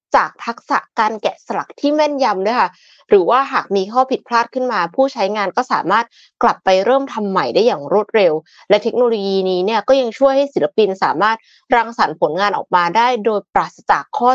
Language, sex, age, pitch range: Thai, female, 20-39, 190-265 Hz